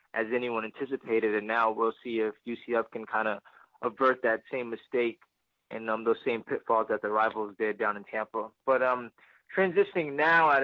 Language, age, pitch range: English, 20-39, 115-135 Hz